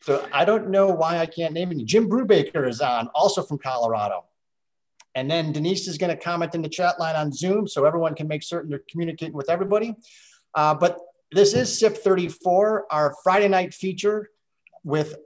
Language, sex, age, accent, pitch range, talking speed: English, male, 40-59, American, 130-175 Hz, 195 wpm